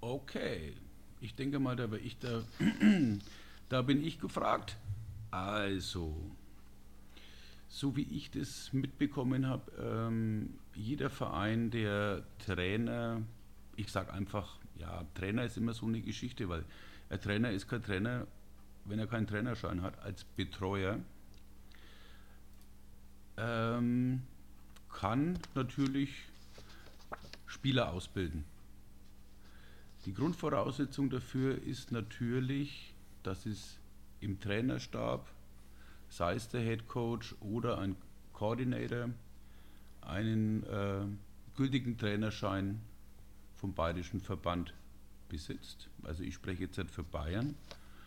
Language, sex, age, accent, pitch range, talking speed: German, male, 50-69, German, 100-125 Hz, 100 wpm